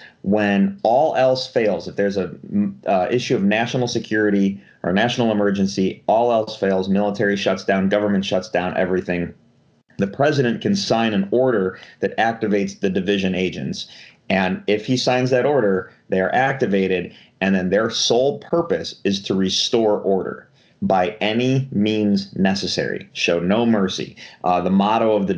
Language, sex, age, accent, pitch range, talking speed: English, male, 30-49, American, 95-115 Hz, 155 wpm